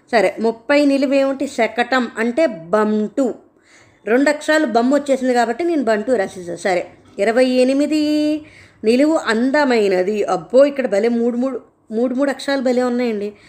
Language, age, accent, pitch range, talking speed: Telugu, 20-39, native, 220-300 Hz, 120 wpm